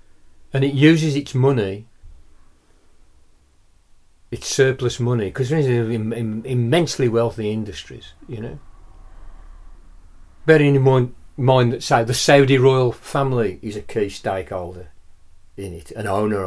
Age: 40-59